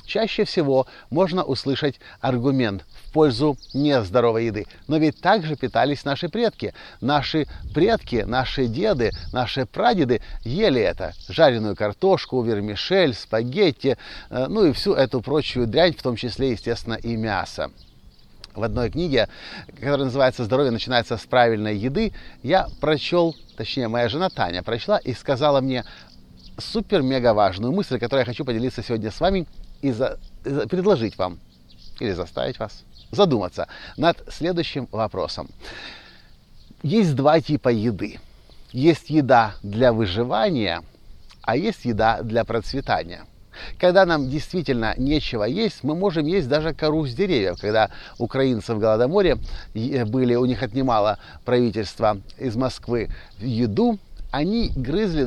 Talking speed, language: 130 wpm, Russian